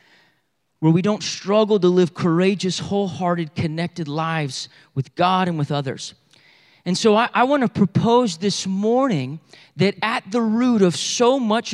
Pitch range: 160-215 Hz